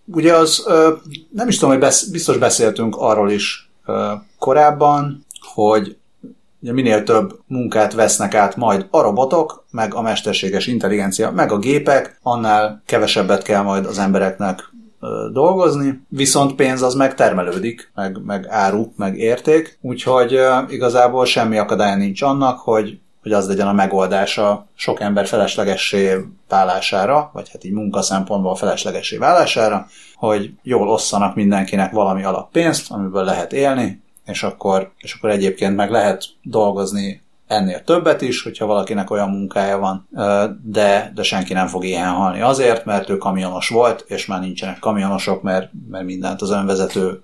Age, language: 30-49, Hungarian